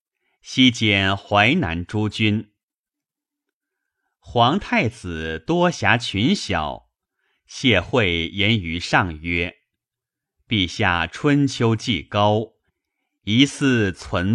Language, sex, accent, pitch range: Chinese, male, native, 90-130 Hz